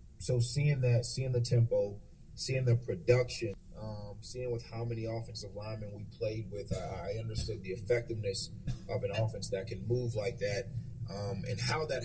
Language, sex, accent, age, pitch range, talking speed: English, male, American, 30-49, 105-120 Hz, 175 wpm